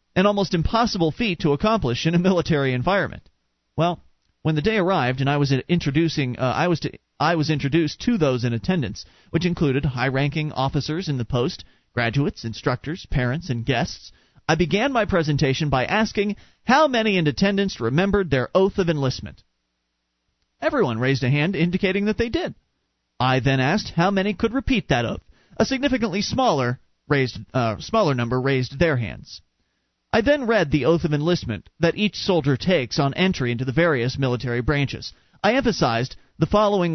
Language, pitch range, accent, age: English, 135-195 Hz, American, 40-59